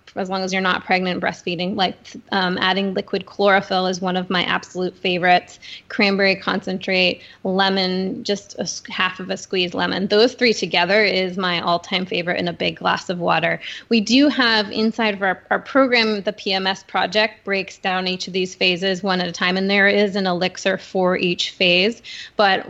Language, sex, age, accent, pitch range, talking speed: English, female, 20-39, American, 185-215 Hz, 185 wpm